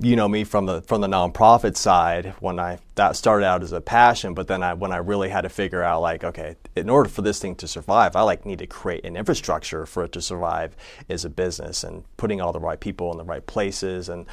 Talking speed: 255 wpm